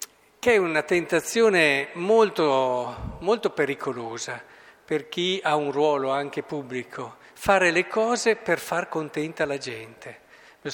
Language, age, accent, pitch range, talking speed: Italian, 50-69, native, 130-170 Hz, 125 wpm